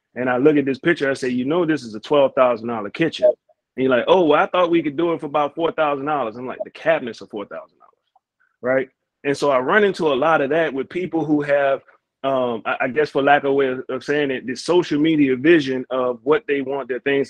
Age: 30-49